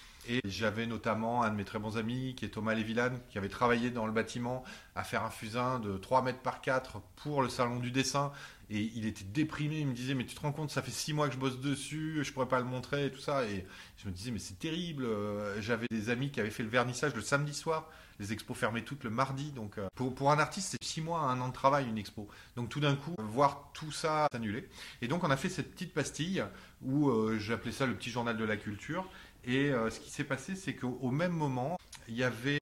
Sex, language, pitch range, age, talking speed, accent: male, French, 115-145 Hz, 30-49, 260 wpm, French